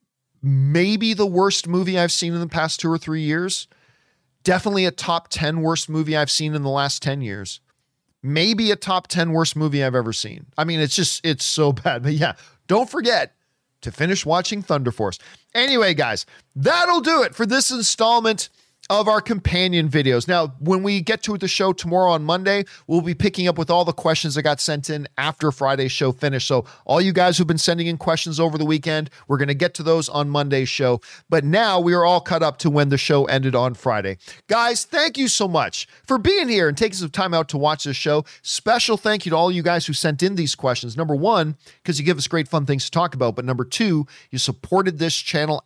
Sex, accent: male, American